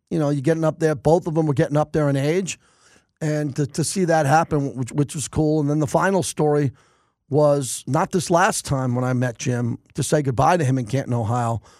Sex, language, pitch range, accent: male, English, 140-165 Hz, American